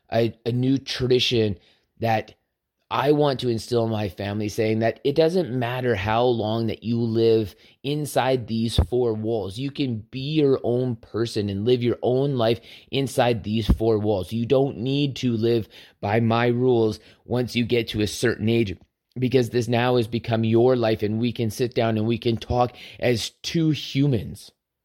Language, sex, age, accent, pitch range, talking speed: English, male, 20-39, American, 105-125 Hz, 180 wpm